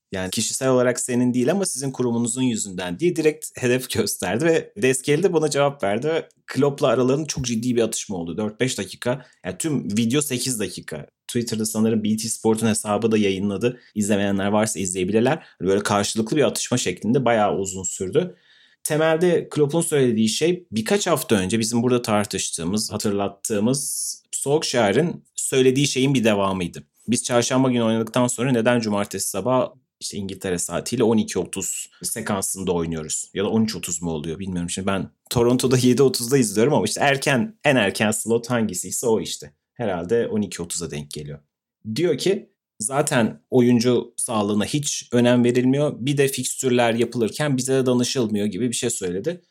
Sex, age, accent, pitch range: male, 30-49, native, 105-140 Hz